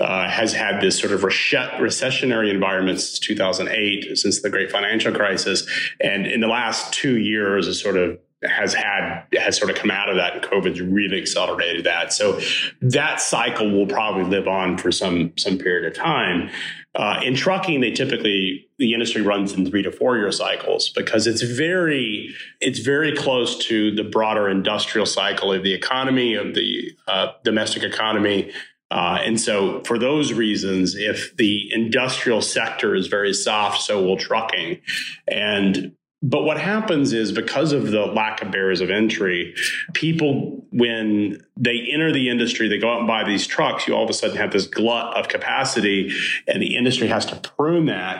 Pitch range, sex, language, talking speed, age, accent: 105-130 Hz, male, English, 180 wpm, 30-49, American